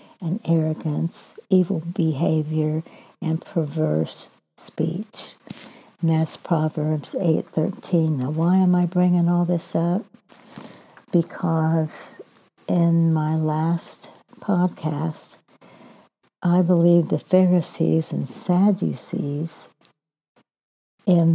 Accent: American